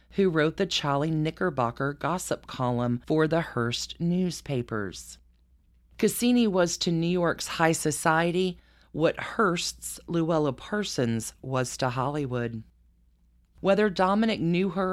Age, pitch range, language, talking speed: 40-59, 125-170 Hz, English, 115 wpm